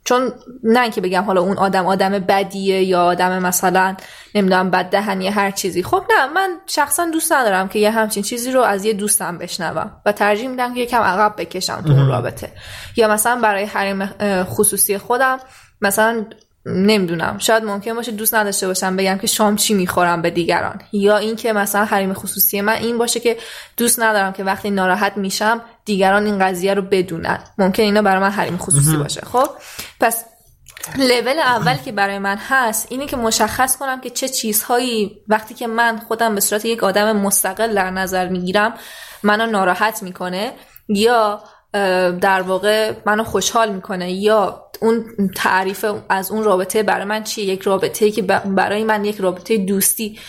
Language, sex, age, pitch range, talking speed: Persian, female, 20-39, 190-225 Hz, 170 wpm